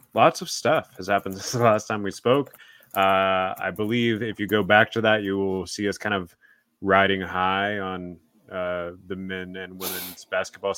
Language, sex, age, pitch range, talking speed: English, male, 30-49, 95-115 Hz, 195 wpm